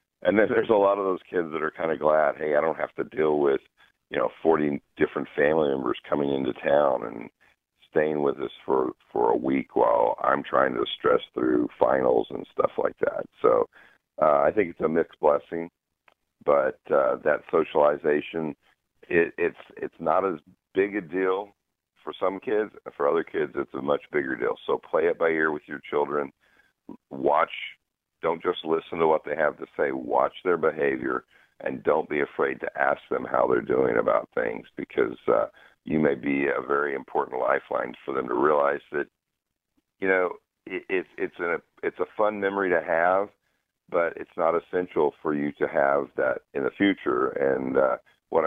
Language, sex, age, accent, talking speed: English, male, 50-69, American, 190 wpm